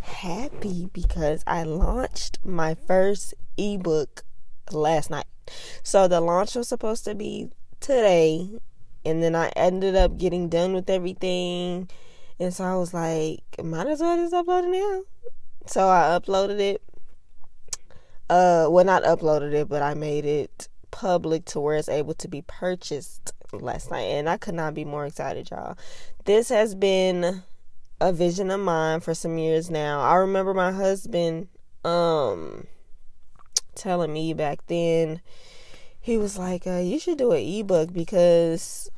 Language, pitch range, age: English, 160-195 Hz, 20-39